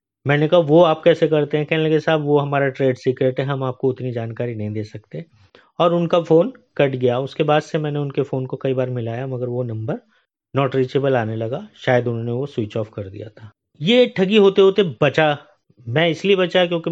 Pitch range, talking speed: 130-150 Hz, 215 wpm